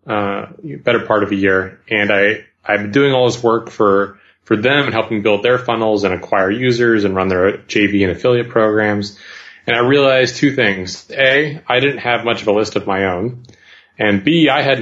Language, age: English, 30-49